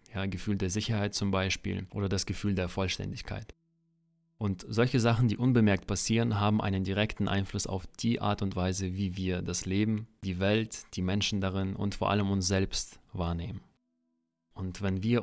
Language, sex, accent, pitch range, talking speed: German, male, German, 95-110 Hz, 170 wpm